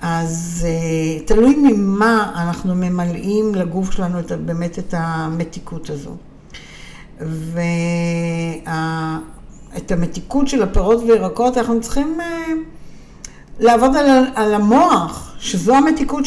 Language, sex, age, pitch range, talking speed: Hebrew, female, 60-79, 170-225 Hz, 100 wpm